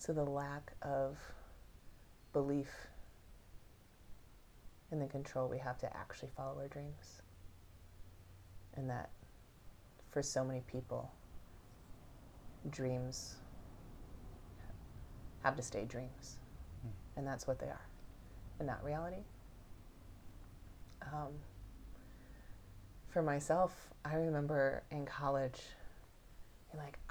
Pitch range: 95-160 Hz